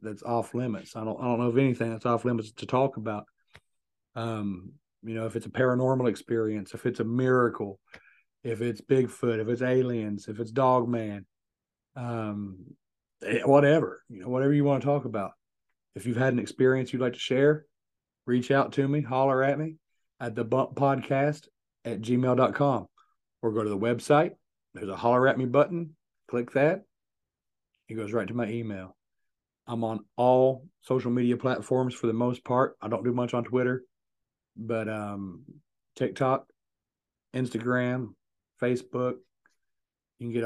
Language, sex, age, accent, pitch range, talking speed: English, male, 40-59, American, 115-130 Hz, 165 wpm